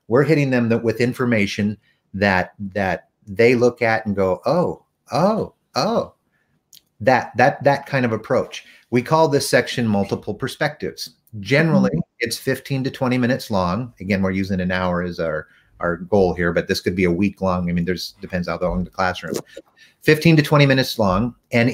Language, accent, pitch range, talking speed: English, American, 100-130 Hz, 180 wpm